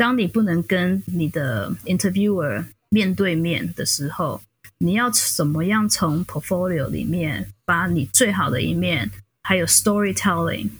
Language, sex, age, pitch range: Chinese, female, 20-39, 160-205 Hz